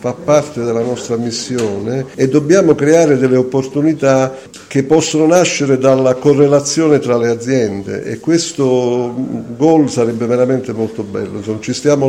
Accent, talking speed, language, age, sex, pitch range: native, 130 wpm, Italian, 50-69, male, 115-135 Hz